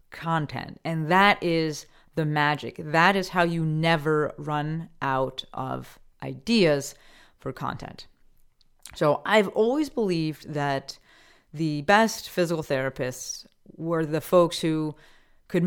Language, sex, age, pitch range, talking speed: English, female, 30-49, 155-200 Hz, 120 wpm